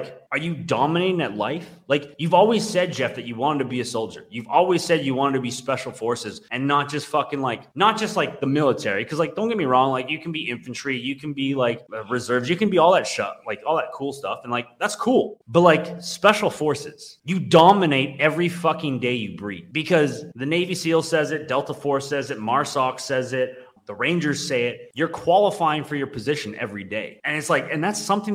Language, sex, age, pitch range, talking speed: English, male, 20-39, 125-165 Hz, 235 wpm